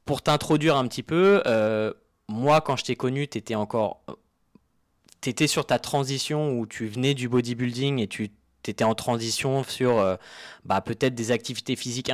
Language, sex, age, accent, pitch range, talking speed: English, male, 20-39, French, 110-135 Hz, 170 wpm